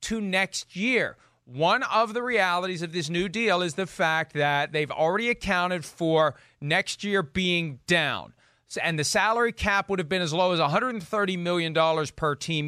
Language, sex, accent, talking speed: English, male, American, 180 wpm